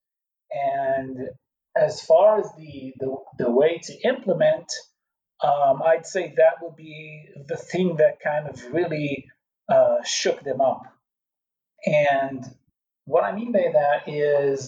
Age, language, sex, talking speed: 40-59, English, male, 135 wpm